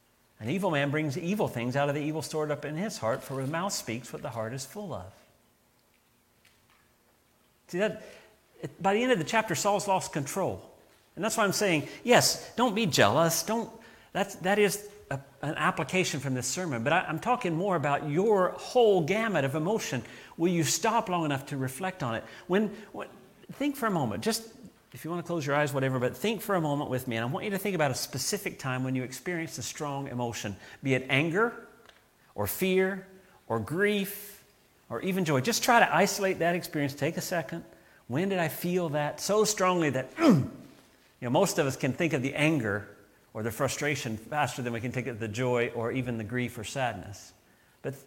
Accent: American